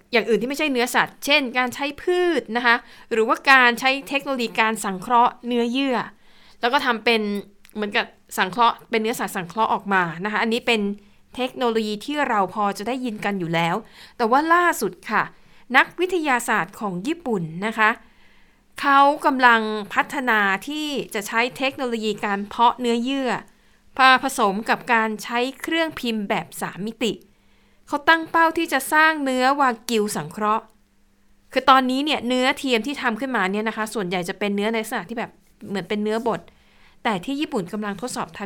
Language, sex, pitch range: Thai, female, 210-265 Hz